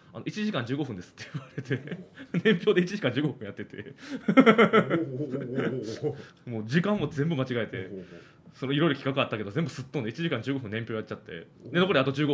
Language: Japanese